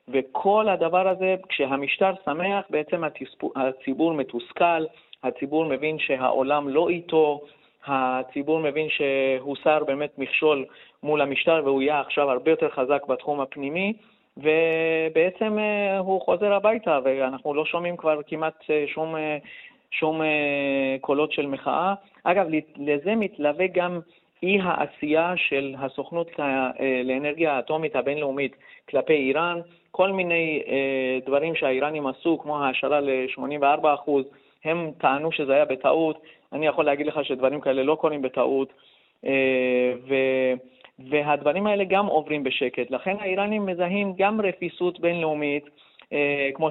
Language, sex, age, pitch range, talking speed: Hebrew, male, 40-59, 135-170 Hz, 115 wpm